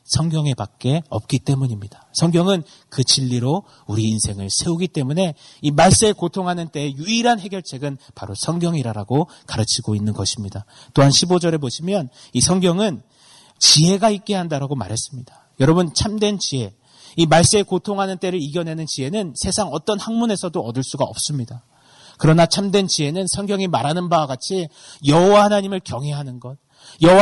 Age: 30-49